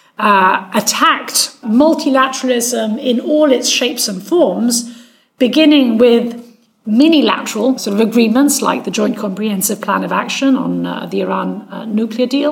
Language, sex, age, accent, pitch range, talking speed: English, female, 40-59, British, 215-265 Hz, 140 wpm